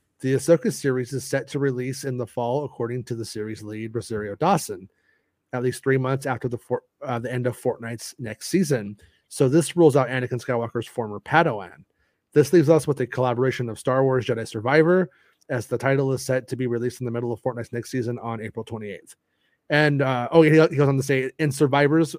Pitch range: 120-140 Hz